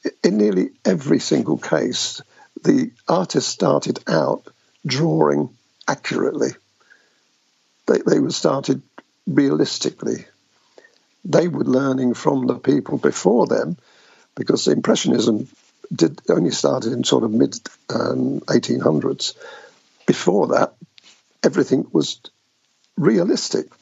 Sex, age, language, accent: male, 50-69, English, British